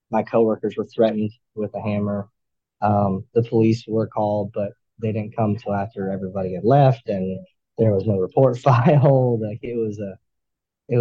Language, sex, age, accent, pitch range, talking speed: English, male, 20-39, American, 105-120 Hz, 175 wpm